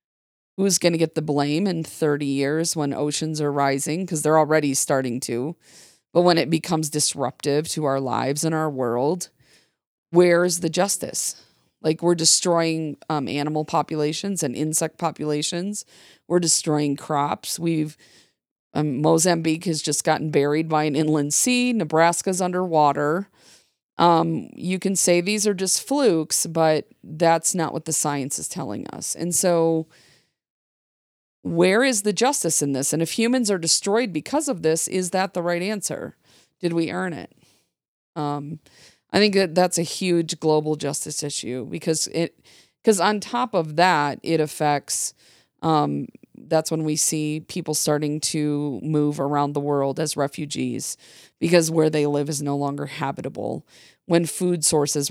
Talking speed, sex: 155 wpm, female